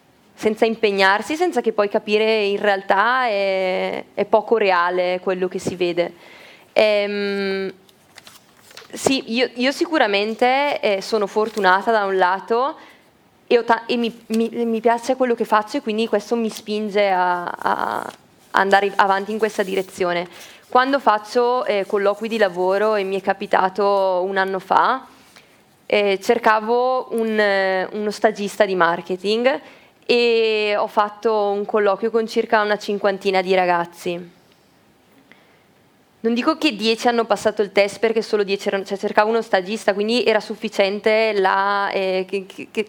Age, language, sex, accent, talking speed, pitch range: 20-39, Italian, female, native, 145 wpm, 195-230 Hz